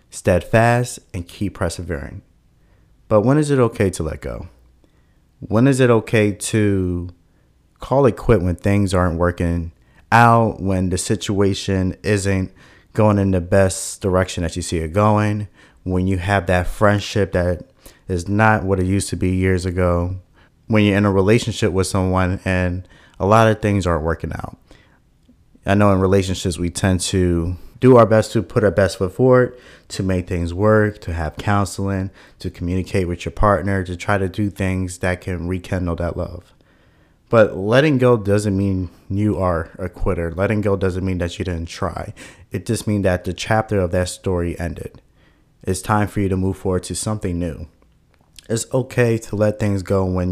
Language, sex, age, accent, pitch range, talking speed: English, male, 30-49, American, 90-105 Hz, 180 wpm